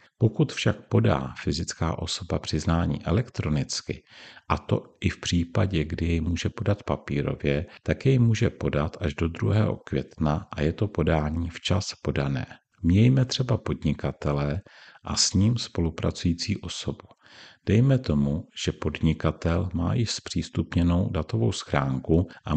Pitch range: 75-105 Hz